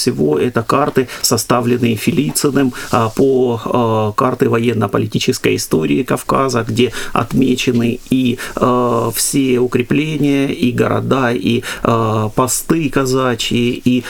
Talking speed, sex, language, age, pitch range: 90 wpm, male, Russian, 30-49, 115-135 Hz